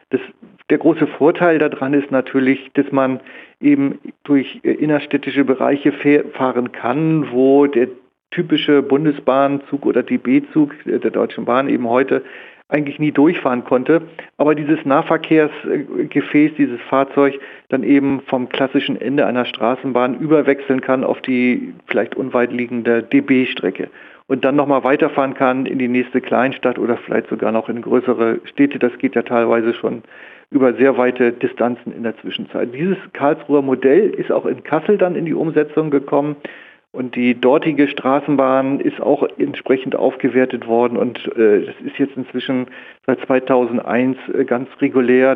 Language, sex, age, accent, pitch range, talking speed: German, male, 40-59, German, 125-150 Hz, 140 wpm